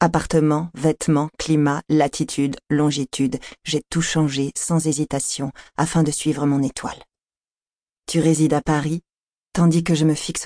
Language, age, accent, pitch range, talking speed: French, 40-59, French, 150-180 Hz, 140 wpm